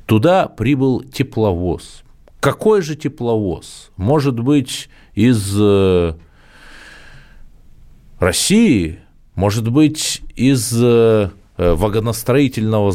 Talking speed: 65 wpm